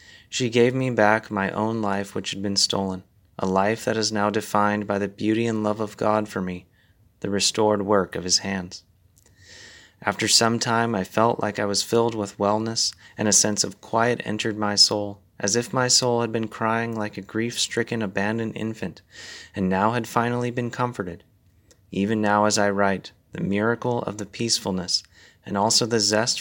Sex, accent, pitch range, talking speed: male, American, 95-110 Hz, 190 wpm